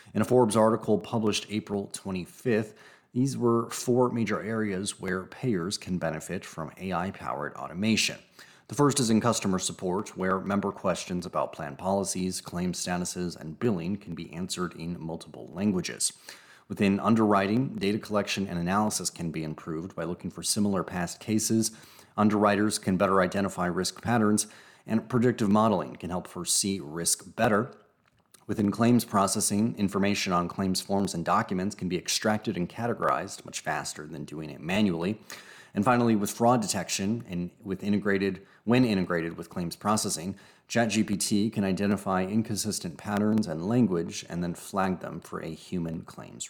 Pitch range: 90-110 Hz